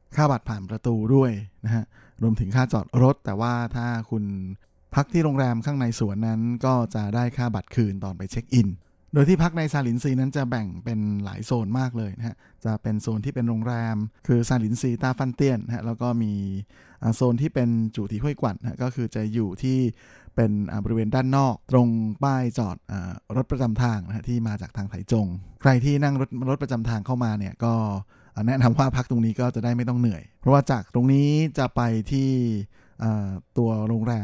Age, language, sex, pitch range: 20-39, Thai, male, 105-125 Hz